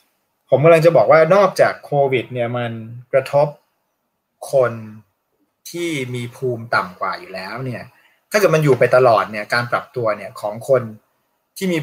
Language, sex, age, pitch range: Thai, male, 20-39, 120-145 Hz